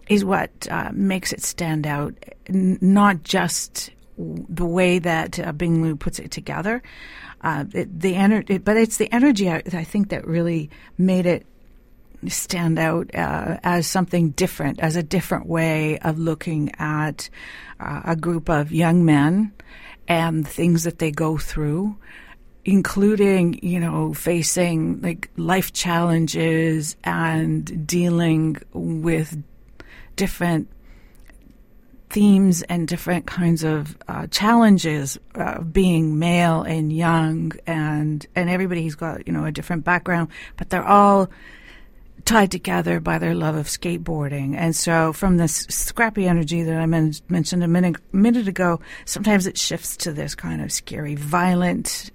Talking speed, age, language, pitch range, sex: 145 wpm, 50-69, English, 160-185 Hz, female